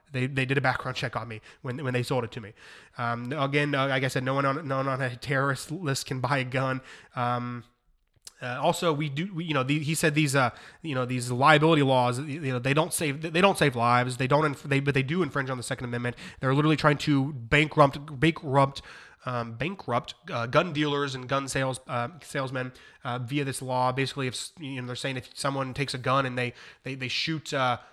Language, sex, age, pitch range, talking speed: English, male, 20-39, 125-150 Hz, 235 wpm